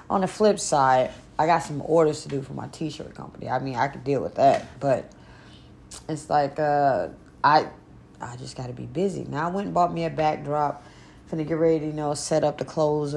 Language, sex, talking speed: English, female, 230 wpm